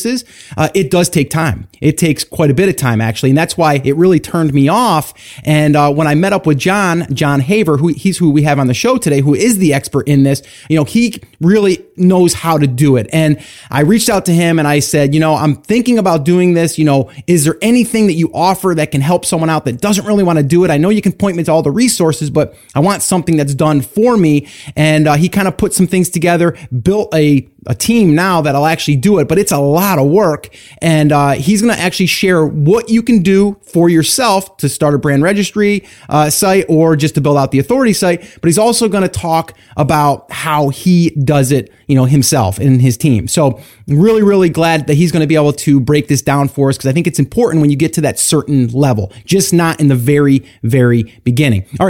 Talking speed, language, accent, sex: 245 wpm, English, American, male